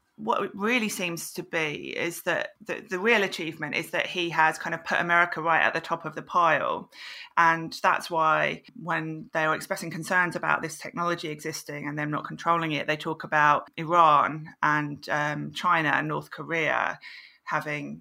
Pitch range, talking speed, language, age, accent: 155-170 Hz, 185 wpm, English, 30-49, British